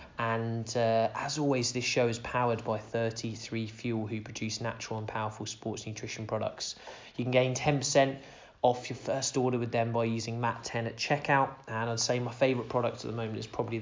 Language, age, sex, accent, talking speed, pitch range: English, 20-39, male, British, 195 wpm, 110-130 Hz